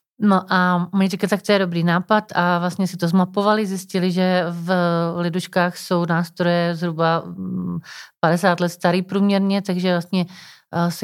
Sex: female